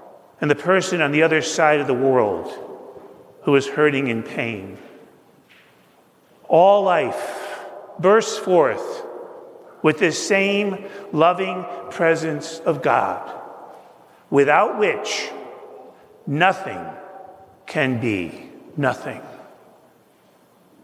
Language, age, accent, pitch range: English, 50-69, American, 150-195 Hz